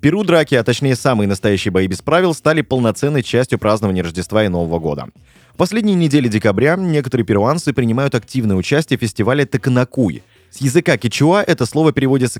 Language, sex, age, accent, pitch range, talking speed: Russian, male, 20-39, native, 110-150 Hz, 175 wpm